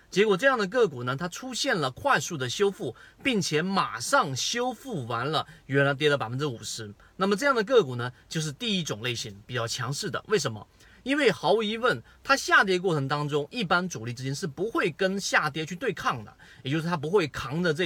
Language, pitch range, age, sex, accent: Chinese, 130-195 Hz, 30-49, male, native